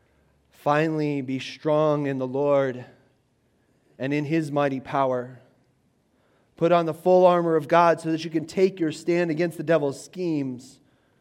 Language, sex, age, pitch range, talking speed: English, male, 30-49, 130-175 Hz, 155 wpm